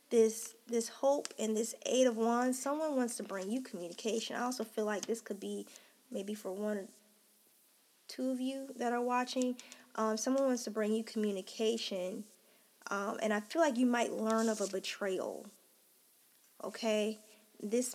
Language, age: English, 20-39